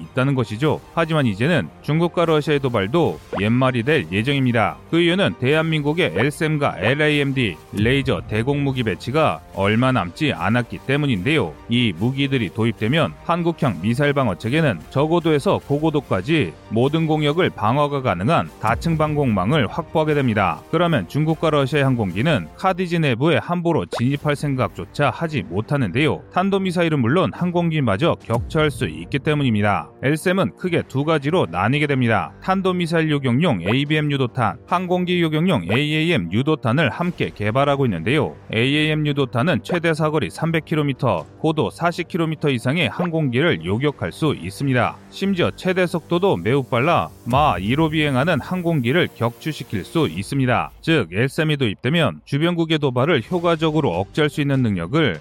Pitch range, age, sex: 120-160 Hz, 30-49, male